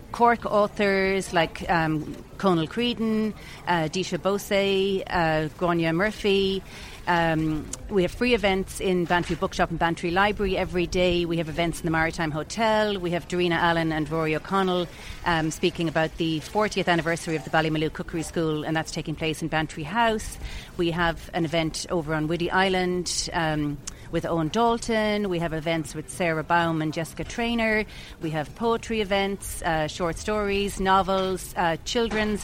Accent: Irish